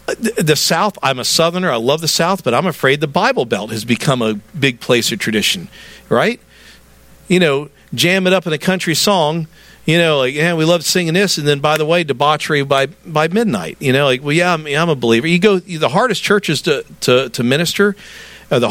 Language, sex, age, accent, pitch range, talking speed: English, male, 50-69, American, 150-205 Hz, 210 wpm